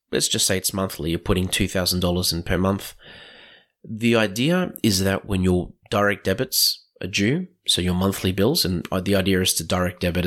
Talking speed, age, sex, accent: 185 wpm, 30-49, male, Australian